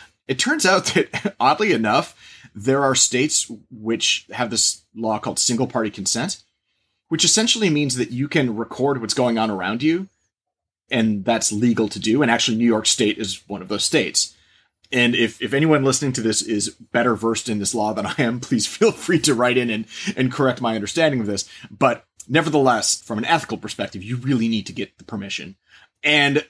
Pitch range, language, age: 105-130 Hz, English, 30-49